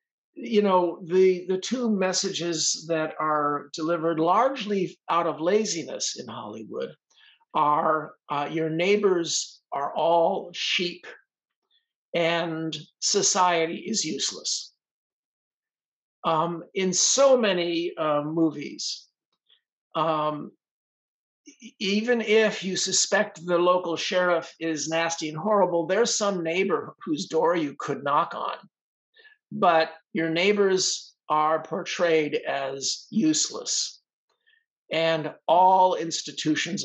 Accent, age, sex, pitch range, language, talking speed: American, 50-69, male, 160-205 Hz, English, 105 wpm